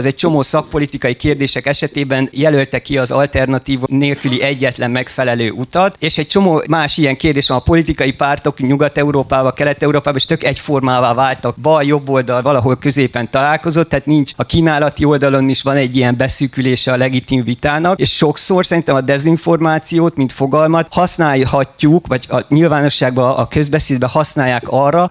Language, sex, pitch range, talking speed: Hungarian, male, 125-150 Hz, 155 wpm